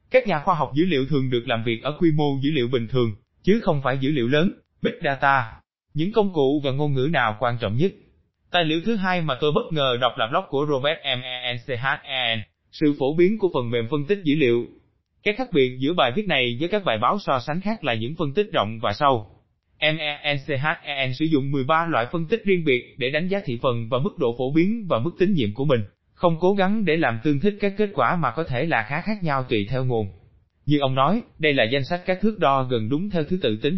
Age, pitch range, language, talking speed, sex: 20-39, 120-175 Hz, Vietnamese, 250 wpm, male